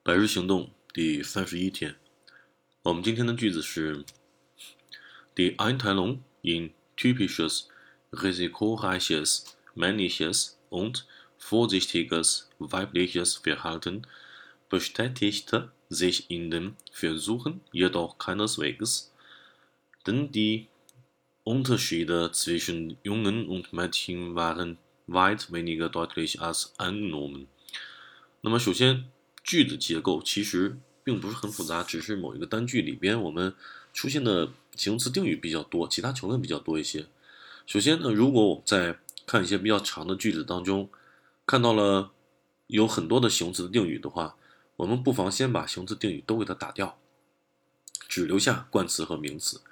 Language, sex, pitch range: Chinese, male, 85-110 Hz